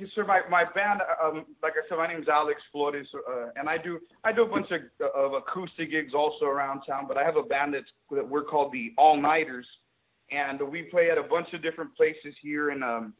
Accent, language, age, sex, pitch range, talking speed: American, English, 30-49, male, 135-165 Hz, 230 wpm